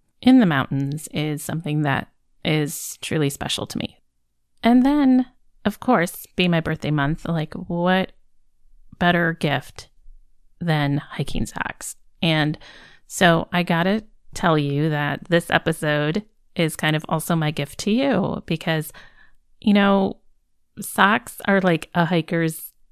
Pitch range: 150-190 Hz